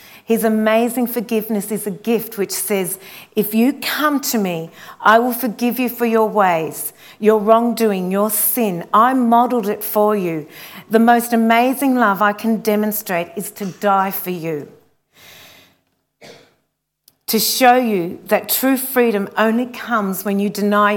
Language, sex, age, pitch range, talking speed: English, female, 40-59, 200-240 Hz, 150 wpm